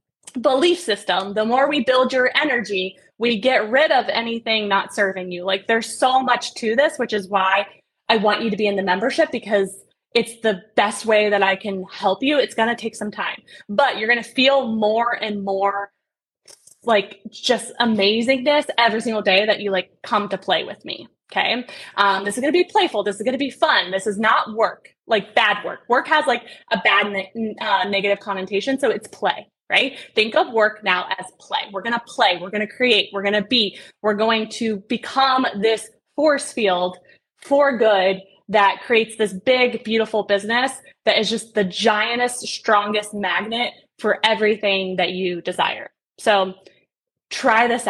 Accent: American